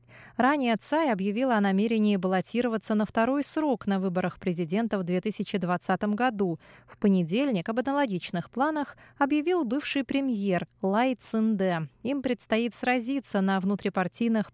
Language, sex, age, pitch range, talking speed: Russian, female, 20-39, 185-250 Hz, 125 wpm